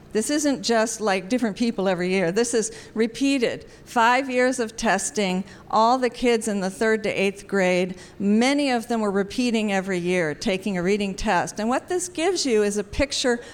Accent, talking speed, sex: American, 190 wpm, female